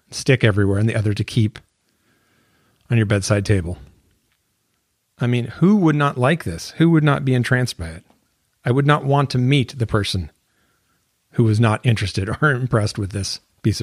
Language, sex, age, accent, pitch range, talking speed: English, male, 40-59, American, 105-125 Hz, 180 wpm